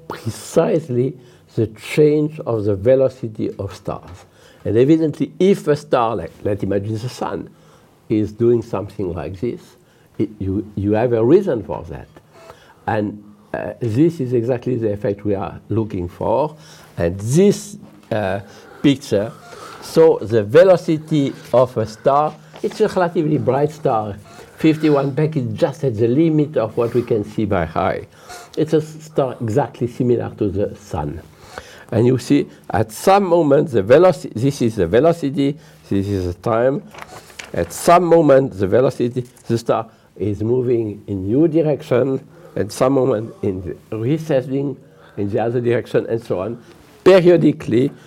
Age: 60-79